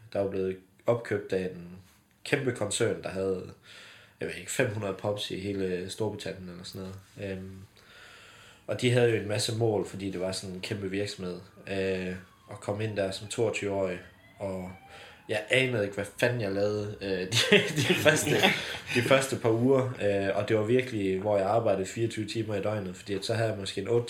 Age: 20-39